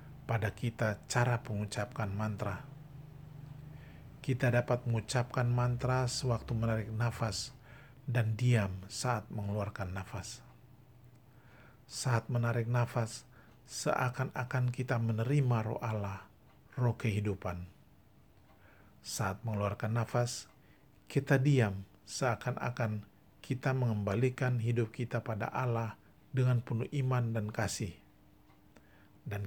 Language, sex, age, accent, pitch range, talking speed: Indonesian, male, 50-69, native, 100-120 Hz, 90 wpm